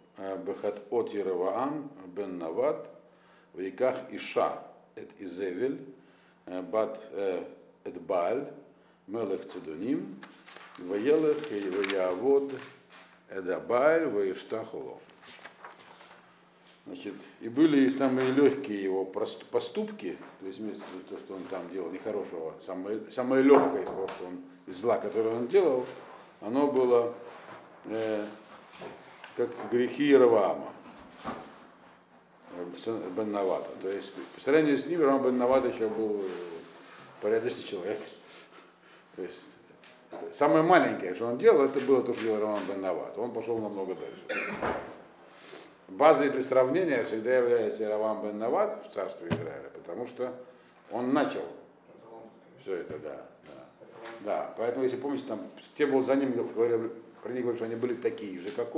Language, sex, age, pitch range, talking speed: Russian, male, 50-69, 110-145 Hz, 105 wpm